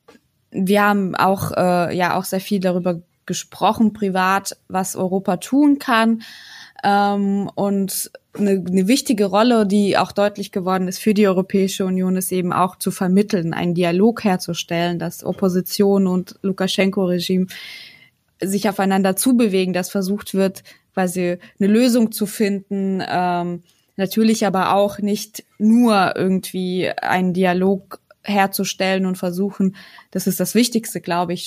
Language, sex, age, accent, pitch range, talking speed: German, female, 20-39, German, 180-200 Hz, 135 wpm